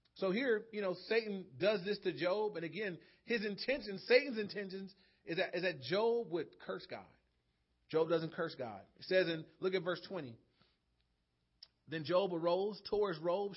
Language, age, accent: English, 30-49, American